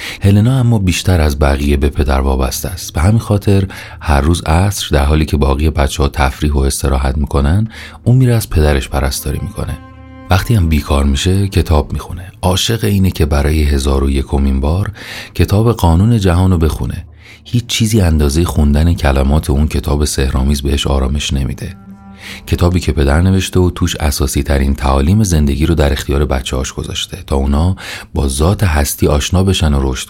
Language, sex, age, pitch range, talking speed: Persian, male, 30-49, 70-95 Hz, 170 wpm